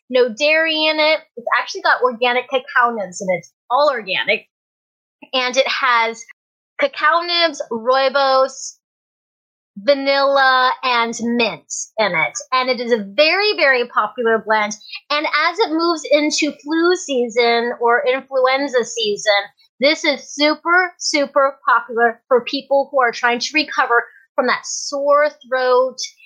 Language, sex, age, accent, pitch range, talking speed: English, female, 30-49, American, 235-295 Hz, 135 wpm